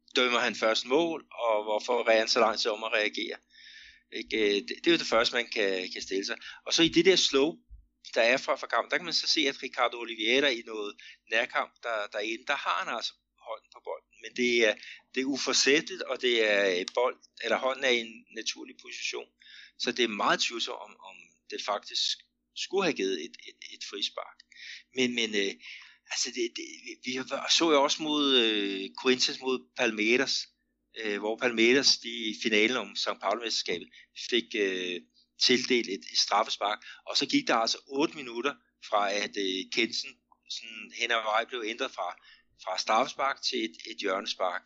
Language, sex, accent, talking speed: Danish, male, native, 185 wpm